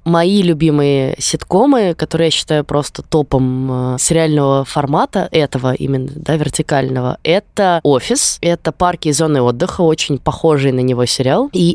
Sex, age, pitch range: female, 20-39, 140-165 Hz